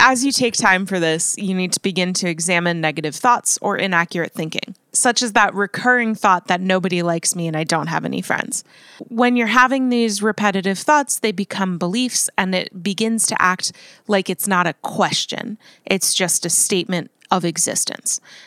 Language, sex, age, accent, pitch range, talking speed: English, female, 20-39, American, 180-230 Hz, 185 wpm